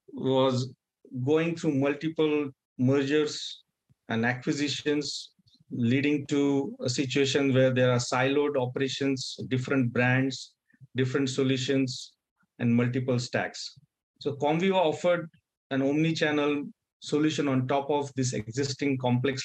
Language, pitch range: English, 125-155 Hz